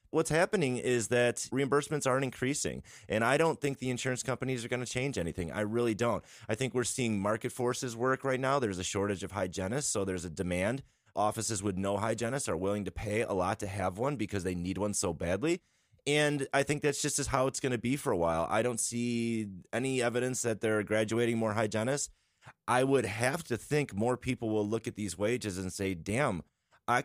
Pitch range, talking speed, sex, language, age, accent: 100-125 Hz, 220 wpm, male, English, 30-49, American